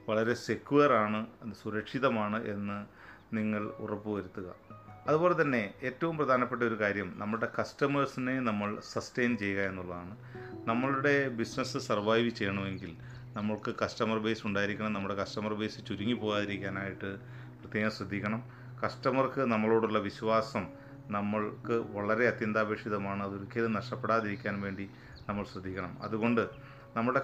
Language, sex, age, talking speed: Malayalam, male, 30-49, 100 wpm